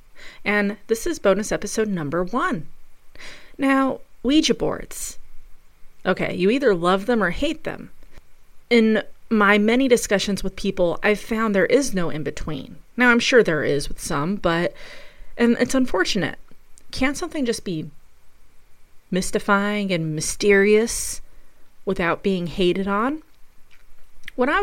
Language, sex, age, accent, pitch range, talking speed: English, female, 30-49, American, 170-215 Hz, 135 wpm